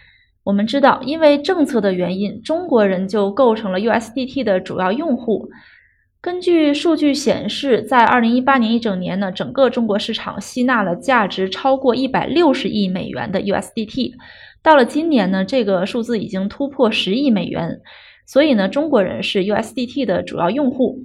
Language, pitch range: Chinese, 210-275 Hz